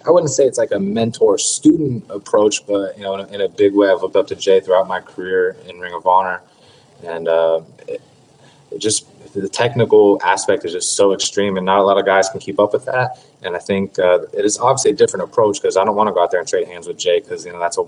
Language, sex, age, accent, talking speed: English, male, 20-39, American, 260 wpm